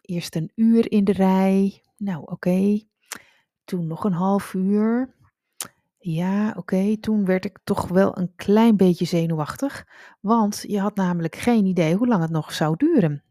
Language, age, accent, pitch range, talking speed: Dutch, 30-49, Dutch, 175-205 Hz, 160 wpm